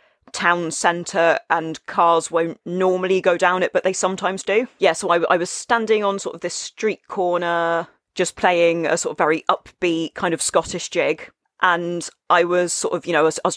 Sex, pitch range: female, 165-210 Hz